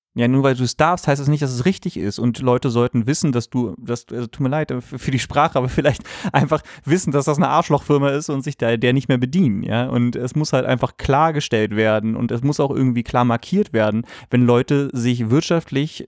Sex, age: male, 30-49